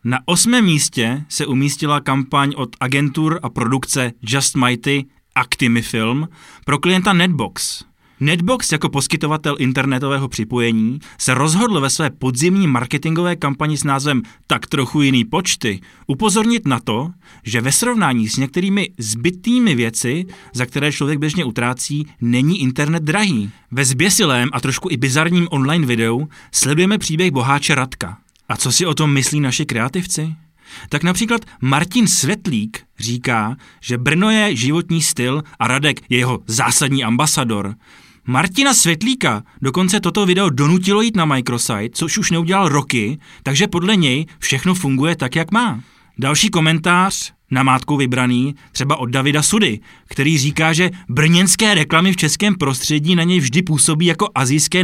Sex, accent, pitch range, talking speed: male, native, 130-175 Hz, 145 wpm